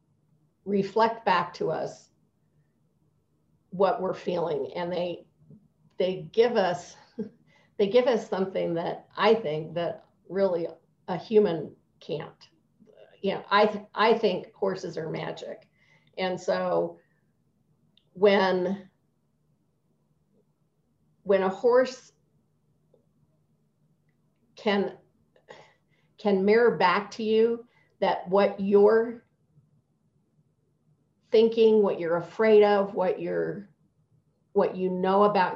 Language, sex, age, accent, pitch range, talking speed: English, female, 50-69, American, 180-215 Hz, 95 wpm